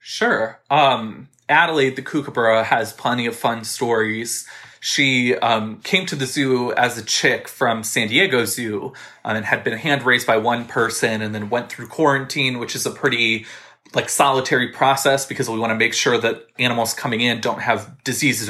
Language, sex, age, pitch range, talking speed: English, male, 20-39, 115-140 Hz, 185 wpm